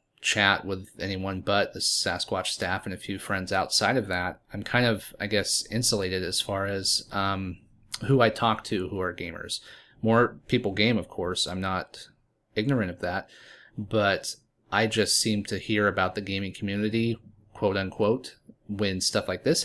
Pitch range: 95-110 Hz